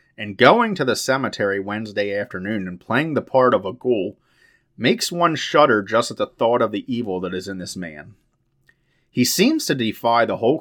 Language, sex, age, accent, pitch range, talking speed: English, male, 30-49, American, 95-125 Hz, 200 wpm